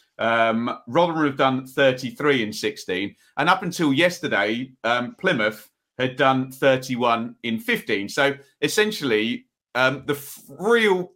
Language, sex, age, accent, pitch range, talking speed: English, male, 40-59, British, 115-150 Hz, 120 wpm